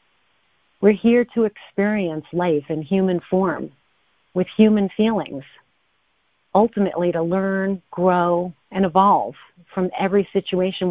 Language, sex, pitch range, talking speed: English, female, 170-195 Hz, 110 wpm